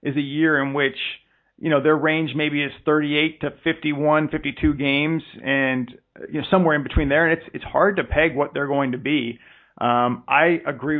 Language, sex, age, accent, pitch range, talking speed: English, male, 40-59, American, 130-155 Hz, 200 wpm